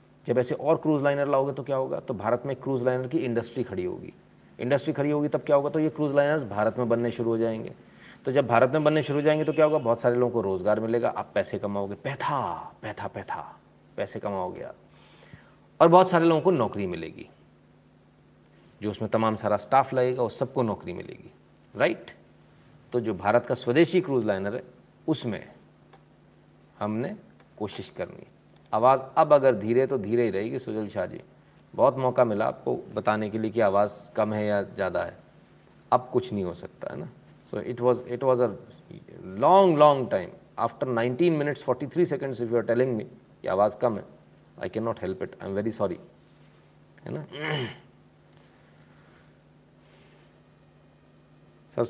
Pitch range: 115-140 Hz